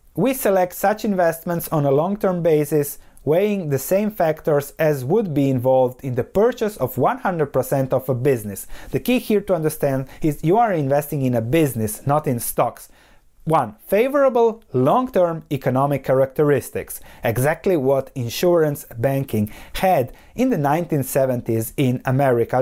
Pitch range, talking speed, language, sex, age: 130-190 Hz, 145 wpm, English, male, 30-49